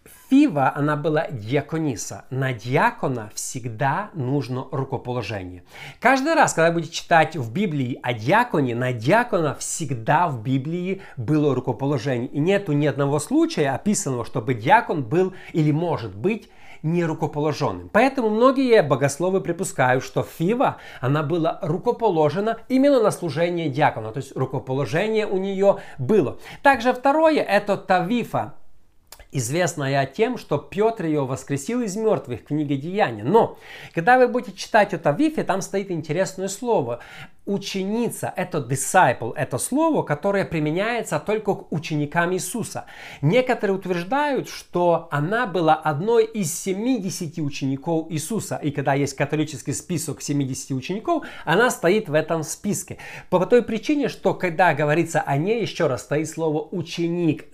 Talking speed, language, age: 140 wpm, Russian, 50-69